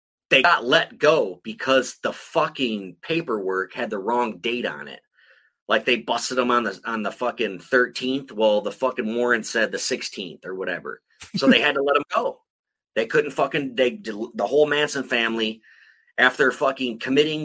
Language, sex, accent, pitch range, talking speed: English, male, American, 125-160 Hz, 175 wpm